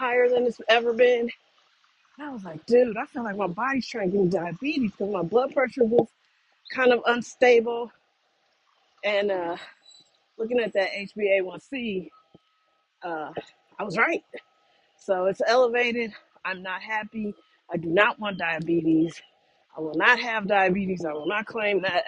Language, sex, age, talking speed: English, female, 40-59, 160 wpm